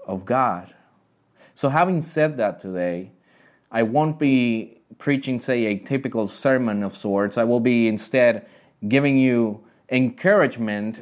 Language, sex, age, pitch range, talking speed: English, male, 30-49, 110-135 Hz, 130 wpm